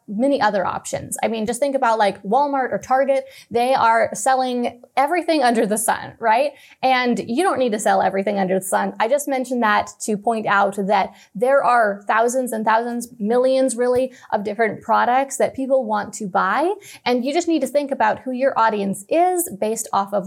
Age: 20-39